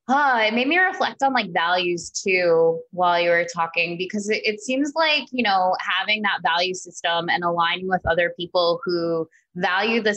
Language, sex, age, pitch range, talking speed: English, female, 20-39, 175-225 Hz, 190 wpm